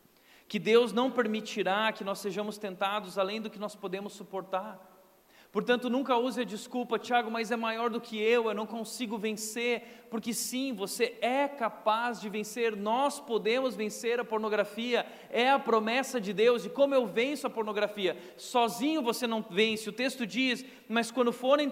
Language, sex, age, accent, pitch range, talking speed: Portuguese, male, 40-59, Brazilian, 195-240 Hz, 175 wpm